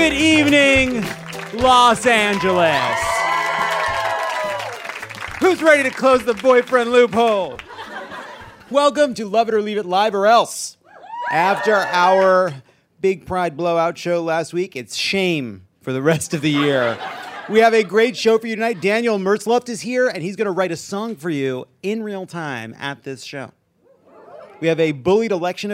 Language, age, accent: English, 30-49, American